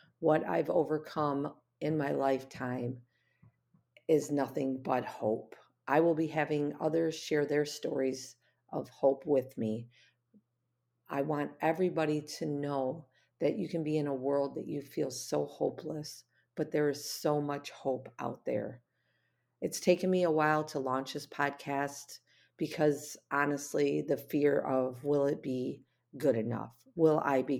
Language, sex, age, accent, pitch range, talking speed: English, female, 40-59, American, 130-155 Hz, 150 wpm